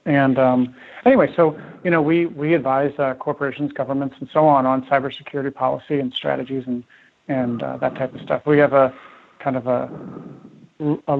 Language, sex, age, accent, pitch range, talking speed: English, male, 40-59, American, 130-145 Hz, 180 wpm